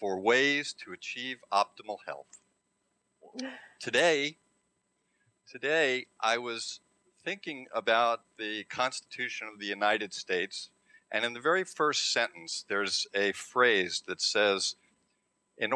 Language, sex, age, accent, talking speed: English, male, 50-69, American, 115 wpm